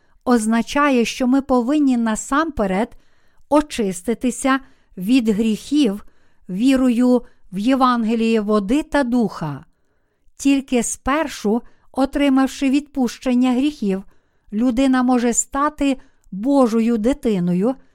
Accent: native